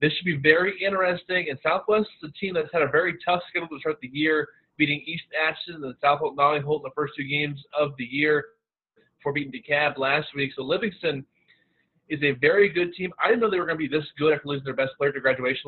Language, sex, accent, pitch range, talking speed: English, male, American, 135-155 Hz, 255 wpm